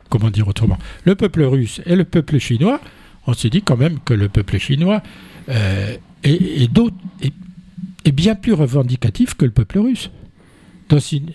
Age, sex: 60-79, male